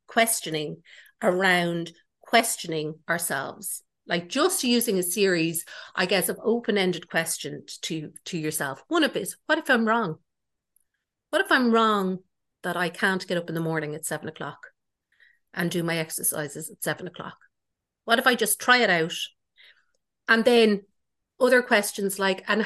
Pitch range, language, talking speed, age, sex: 170-235 Hz, English, 155 wpm, 50-69, female